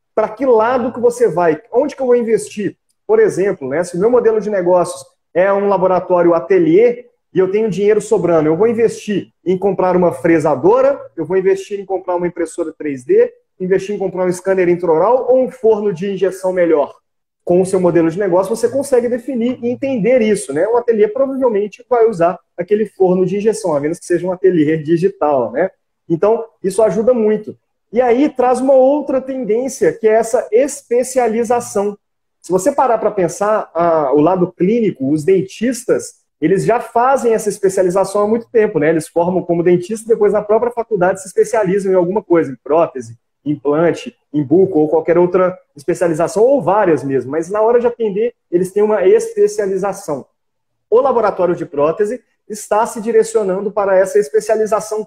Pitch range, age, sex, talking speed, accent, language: 180-235 Hz, 30-49, male, 180 wpm, Brazilian, Portuguese